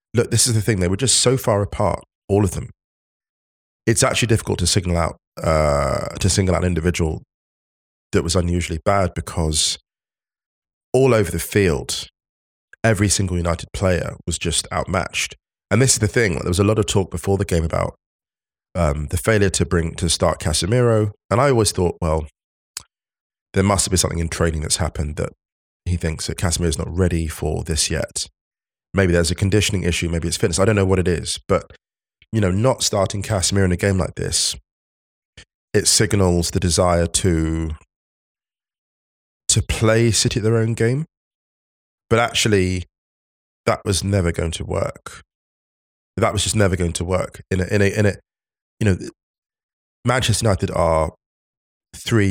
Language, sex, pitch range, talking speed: English, male, 85-105 Hz, 180 wpm